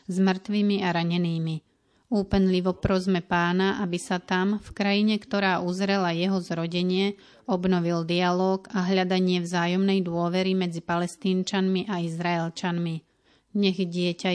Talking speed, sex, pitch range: 115 wpm, female, 175-190 Hz